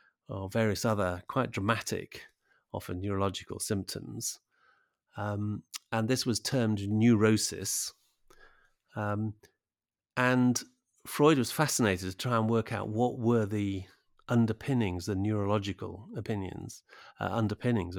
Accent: British